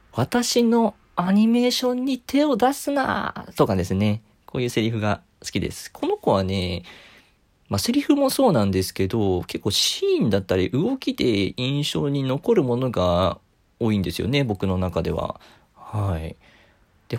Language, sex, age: Japanese, male, 40-59